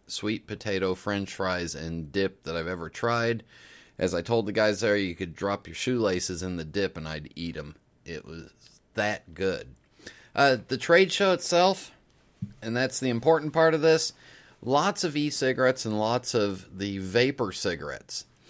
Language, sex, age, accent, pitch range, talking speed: English, male, 30-49, American, 90-120 Hz, 170 wpm